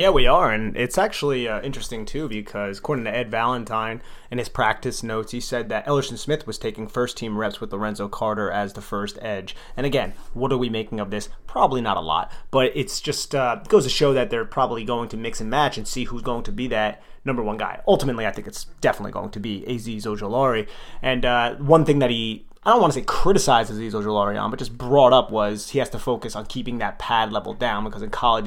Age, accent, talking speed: 30-49, American, 240 wpm